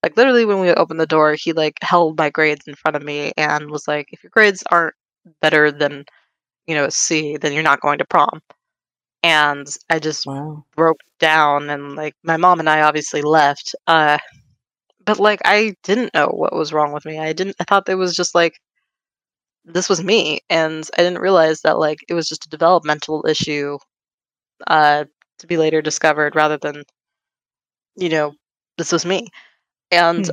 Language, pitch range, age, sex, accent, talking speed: English, 150-180 Hz, 20-39, female, American, 190 wpm